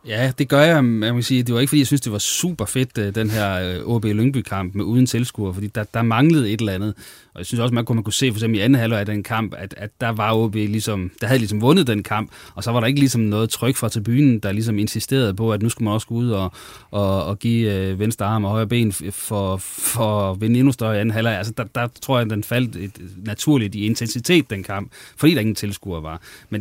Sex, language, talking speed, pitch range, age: male, Danish, 250 wpm, 105-125 Hz, 30-49